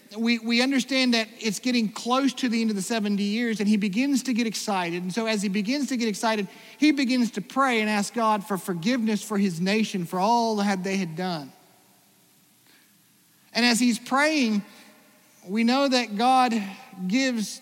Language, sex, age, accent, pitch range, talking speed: English, male, 40-59, American, 185-235 Hz, 185 wpm